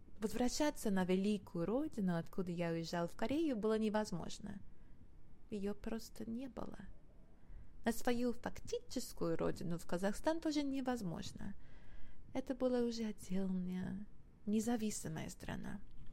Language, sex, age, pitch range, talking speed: English, female, 20-39, 180-230 Hz, 110 wpm